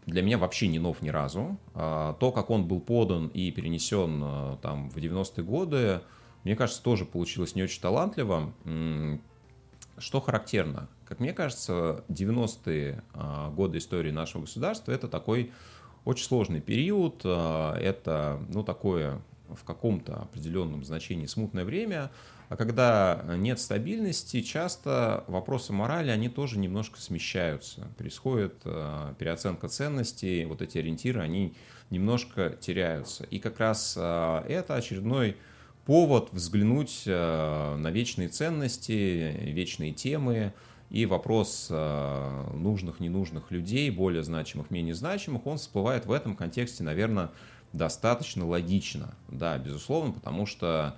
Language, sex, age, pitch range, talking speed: Russian, male, 30-49, 80-120 Hz, 120 wpm